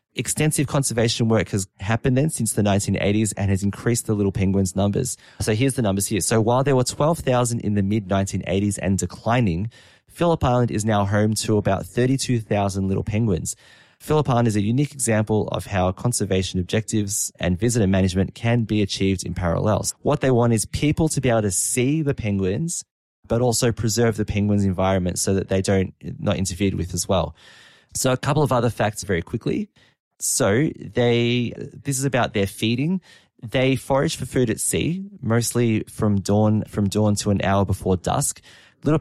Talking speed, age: 180 wpm, 20-39